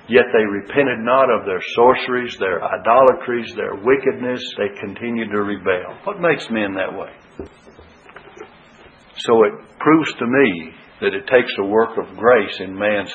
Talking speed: 155 wpm